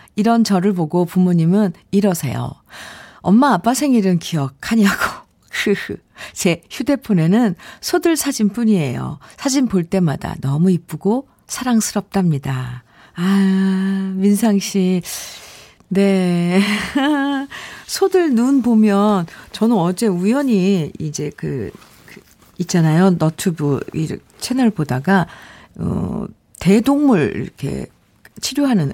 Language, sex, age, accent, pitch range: Korean, female, 50-69, native, 180-240 Hz